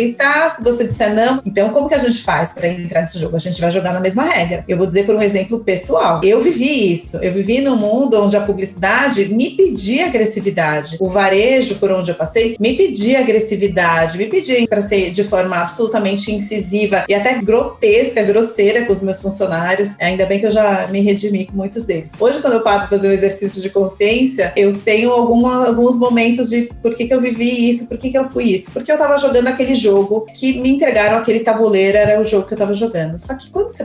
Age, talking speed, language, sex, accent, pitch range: 30-49, 225 wpm, Portuguese, female, Brazilian, 195-245 Hz